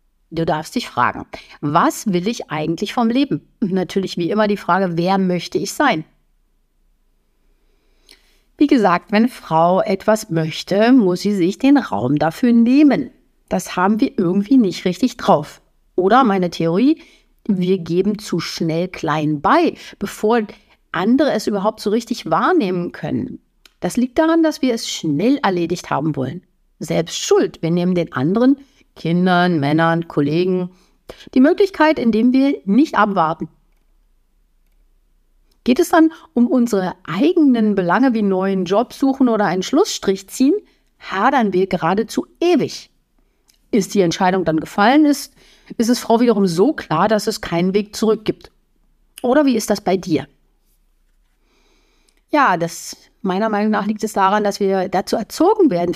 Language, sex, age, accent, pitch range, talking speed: German, female, 50-69, German, 175-250 Hz, 145 wpm